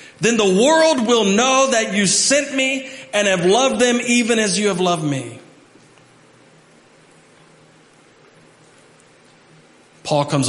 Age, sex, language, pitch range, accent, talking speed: 40-59, male, English, 125-175 Hz, American, 120 wpm